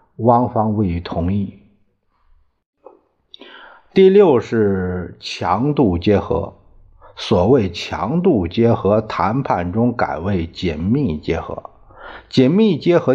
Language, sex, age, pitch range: Chinese, male, 50-69, 95-125 Hz